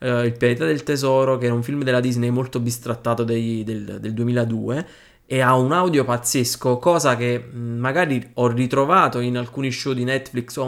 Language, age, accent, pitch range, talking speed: Italian, 20-39, native, 125-150 Hz, 180 wpm